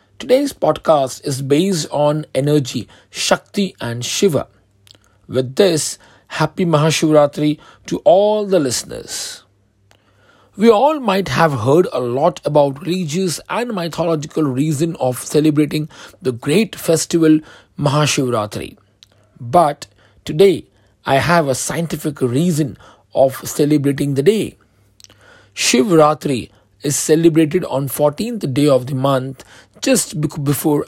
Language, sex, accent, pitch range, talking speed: English, male, Indian, 120-170 Hz, 110 wpm